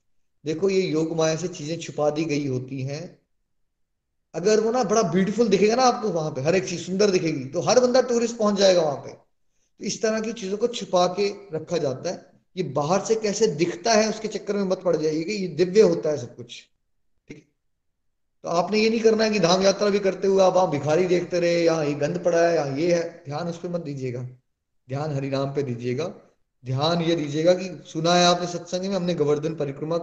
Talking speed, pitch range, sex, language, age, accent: 220 wpm, 145-185 Hz, male, Hindi, 20-39, native